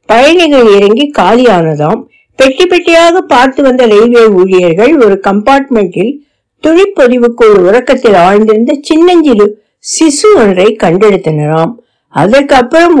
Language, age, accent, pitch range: Tamil, 60-79, native, 210-285 Hz